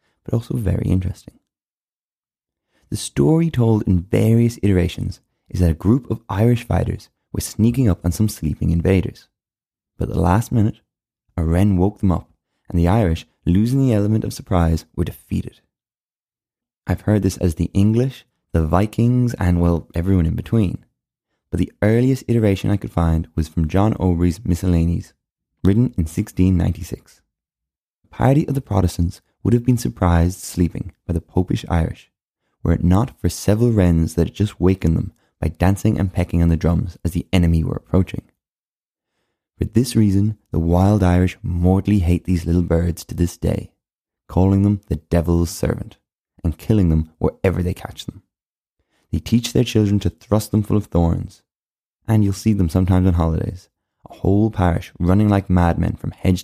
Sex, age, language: male, 20-39, English